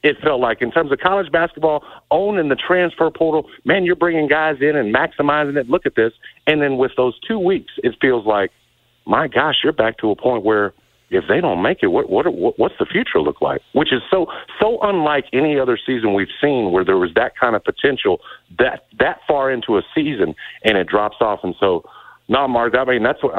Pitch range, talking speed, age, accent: 115-165 Hz, 235 wpm, 50-69, American